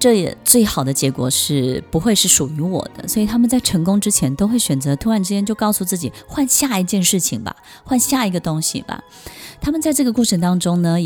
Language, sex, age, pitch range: Chinese, female, 20-39, 155-215 Hz